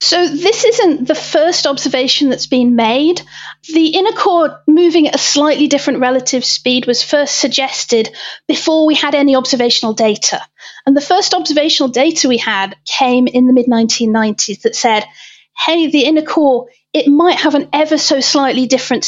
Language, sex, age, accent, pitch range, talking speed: English, female, 40-59, British, 235-295 Hz, 165 wpm